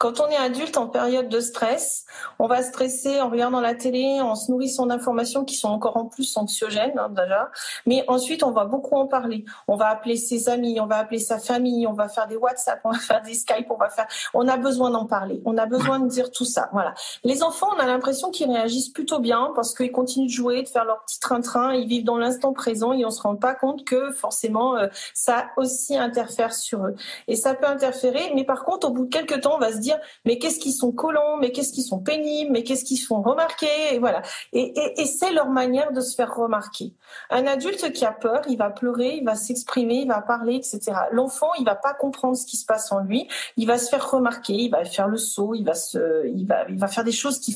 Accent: French